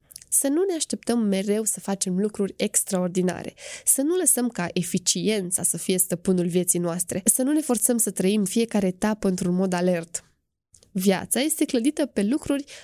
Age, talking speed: 20-39, 165 wpm